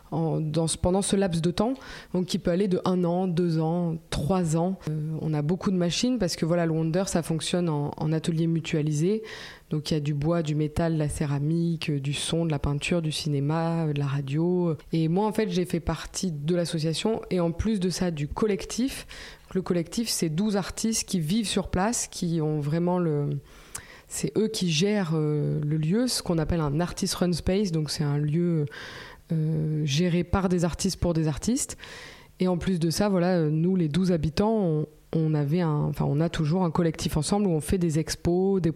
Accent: French